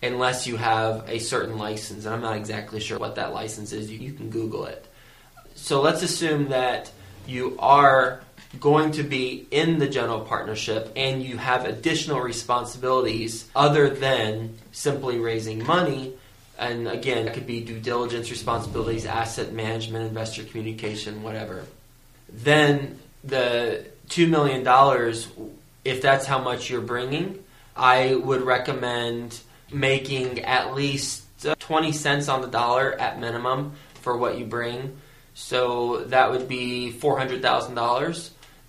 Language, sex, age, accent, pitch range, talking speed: English, male, 20-39, American, 115-135 Hz, 135 wpm